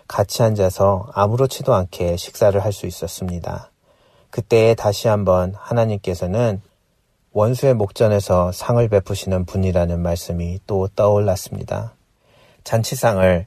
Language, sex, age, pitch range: Korean, male, 30-49, 90-105 Hz